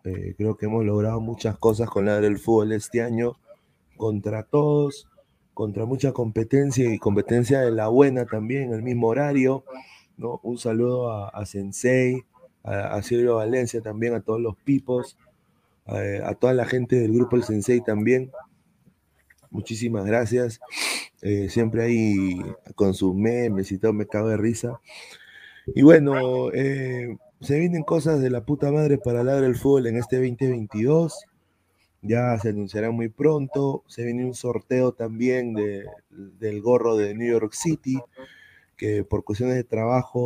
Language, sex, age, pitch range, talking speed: Spanish, male, 30-49, 105-130 Hz, 150 wpm